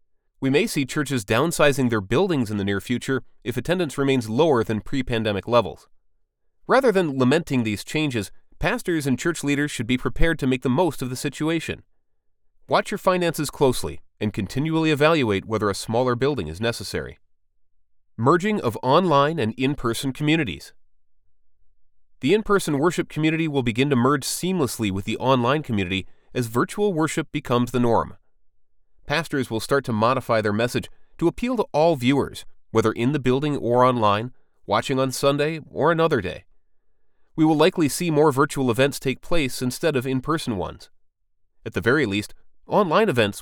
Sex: male